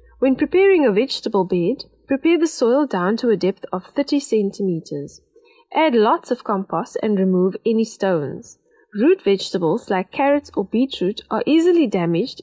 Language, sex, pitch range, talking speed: English, female, 190-275 Hz, 155 wpm